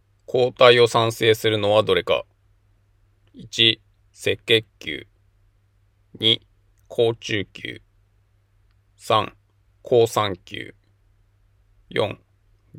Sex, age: male, 20-39